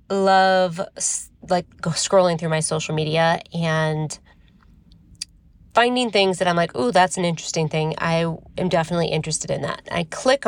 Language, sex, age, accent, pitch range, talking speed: English, female, 20-39, American, 165-205 Hz, 150 wpm